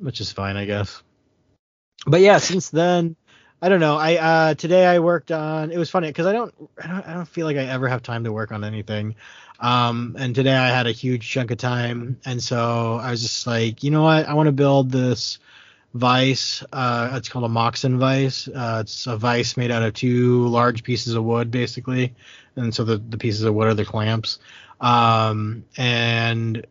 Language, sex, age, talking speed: English, male, 20-39, 210 wpm